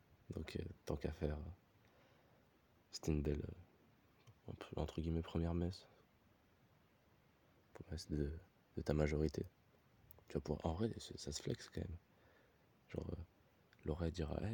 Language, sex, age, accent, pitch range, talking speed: French, male, 20-39, French, 80-95 Hz, 135 wpm